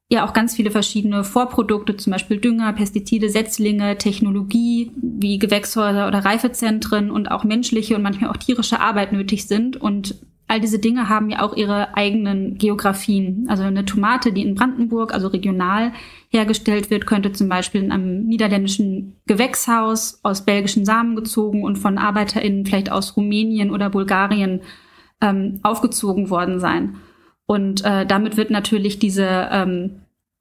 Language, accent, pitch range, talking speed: German, German, 200-220 Hz, 150 wpm